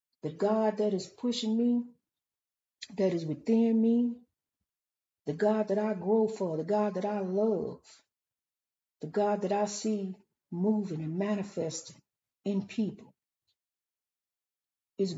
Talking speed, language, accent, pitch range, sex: 125 wpm, English, American, 165-205 Hz, female